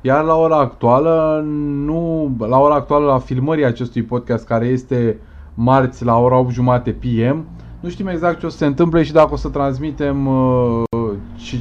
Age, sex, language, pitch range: 20-39, male, Romanian, 110-150 Hz